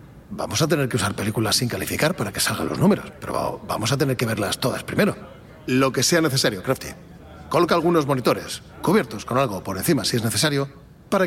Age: 40-59